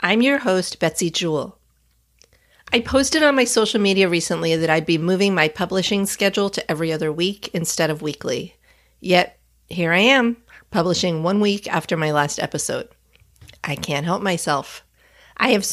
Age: 40-59